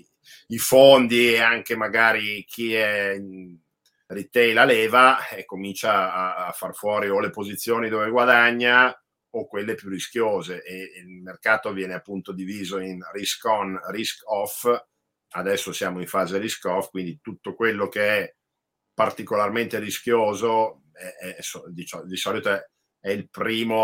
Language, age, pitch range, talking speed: Italian, 50-69, 90-110 Hz, 145 wpm